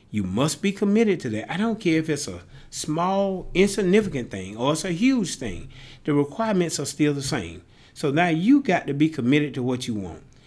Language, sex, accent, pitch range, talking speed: English, male, American, 125-180 Hz, 210 wpm